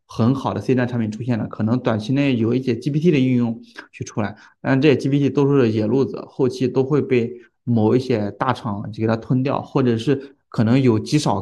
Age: 20-39